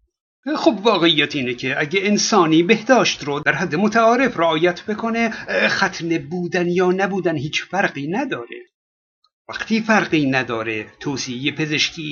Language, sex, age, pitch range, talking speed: Persian, male, 60-79, 160-225 Hz, 125 wpm